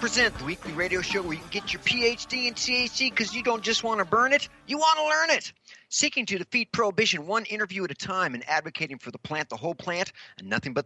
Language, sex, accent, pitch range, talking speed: English, male, American, 150-195 Hz, 250 wpm